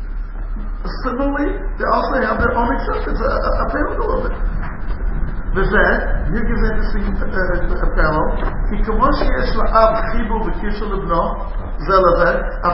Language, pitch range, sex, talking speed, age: English, 185-240 Hz, male, 95 wpm, 50-69